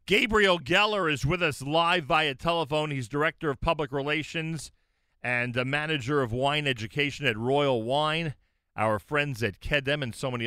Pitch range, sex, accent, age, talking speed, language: 100-150 Hz, male, American, 40-59, 165 wpm, English